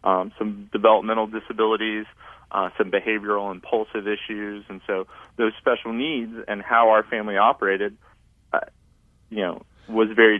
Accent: American